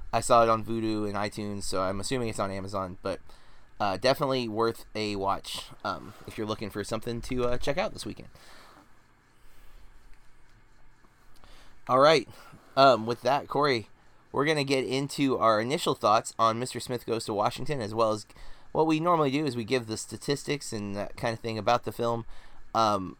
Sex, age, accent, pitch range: male, 20-39, American, 110-130 Hz